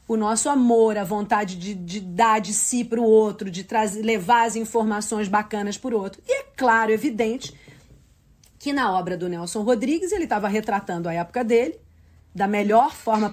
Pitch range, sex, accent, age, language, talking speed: 200-250 Hz, female, Brazilian, 40-59, Portuguese, 180 wpm